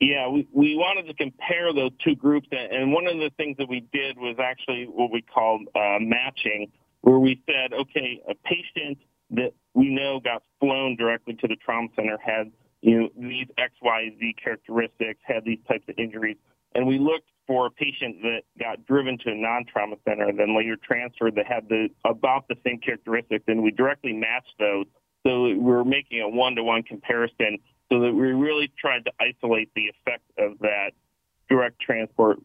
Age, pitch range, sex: 40-59, 110-135 Hz, male